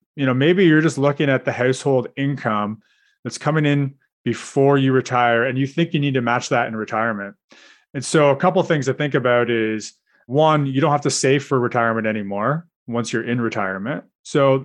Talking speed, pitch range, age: 205 wpm, 115-145 Hz, 30-49